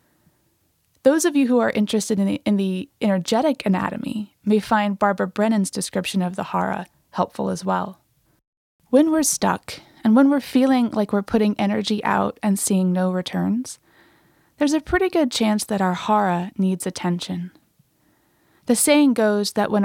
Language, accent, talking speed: English, American, 160 wpm